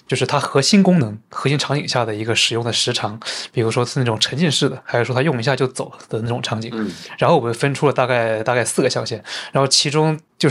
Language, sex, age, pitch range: Chinese, male, 20-39, 120-145 Hz